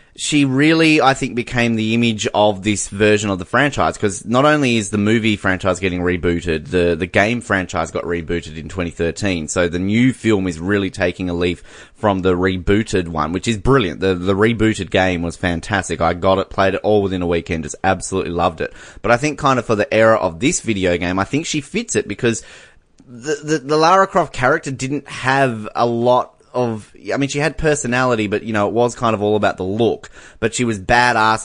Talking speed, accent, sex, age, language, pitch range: 220 wpm, Australian, male, 20-39, English, 90-110 Hz